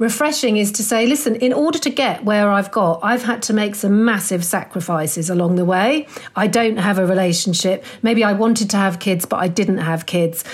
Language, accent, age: English, British, 40-59